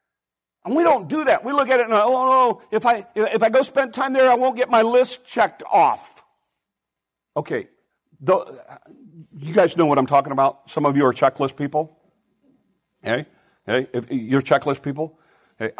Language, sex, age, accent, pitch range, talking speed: English, male, 60-79, American, 145-240 Hz, 200 wpm